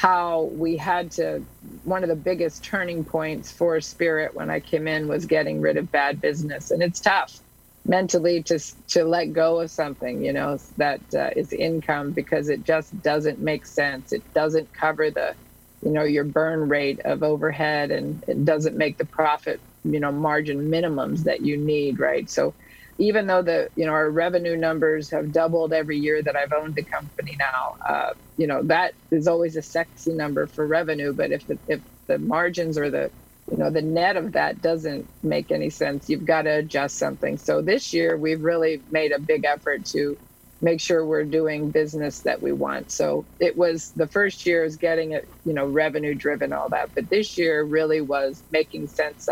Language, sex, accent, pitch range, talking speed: English, female, American, 150-165 Hz, 195 wpm